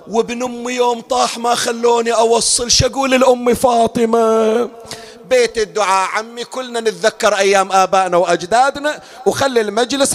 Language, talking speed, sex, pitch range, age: Arabic, 120 wpm, male, 230-290 Hz, 40-59